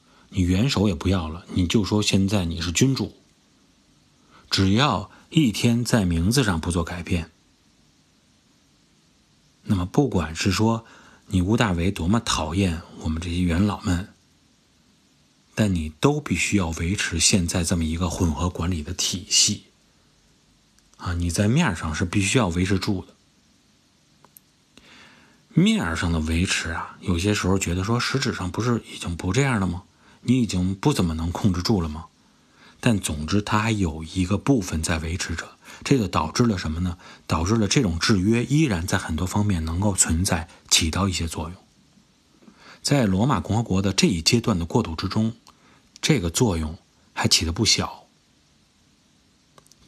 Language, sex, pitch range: Chinese, male, 85-110 Hz